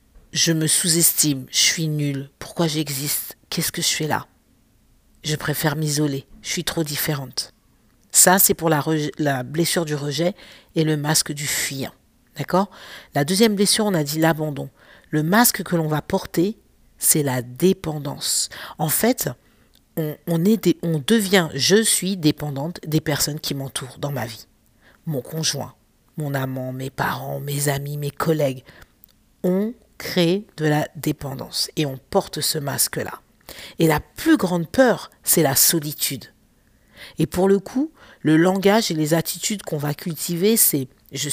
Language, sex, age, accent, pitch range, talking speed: French, female, 50-69, French, 145-185 Hz, 155 wpm